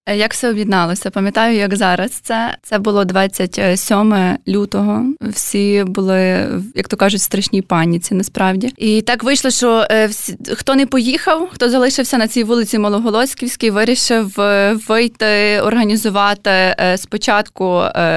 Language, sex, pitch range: Ukrainian, female, 190-225 Hz